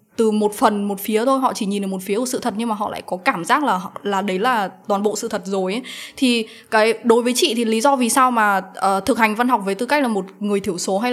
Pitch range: 195-245 Hz